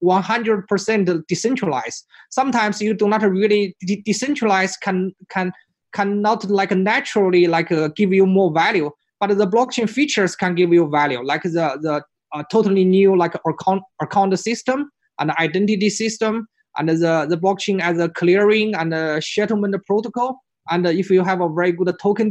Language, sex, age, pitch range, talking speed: English, male, 20-39, 165-205 Hz, 165 wpm